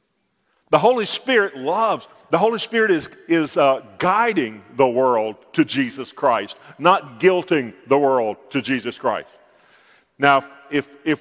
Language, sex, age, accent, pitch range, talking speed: English, male, 50-69, American, 140-180 Hz, 140 wpm